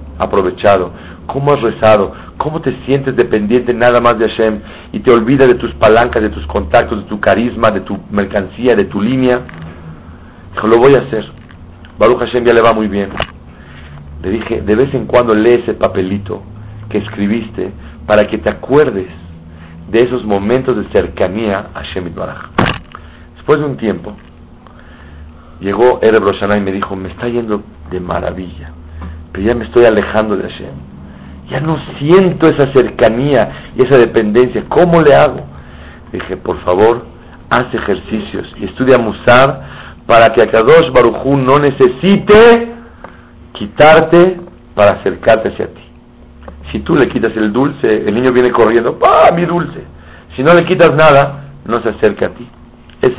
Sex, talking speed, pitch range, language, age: male, 160 wpm, 80-125 Hz, Spanish, 50-69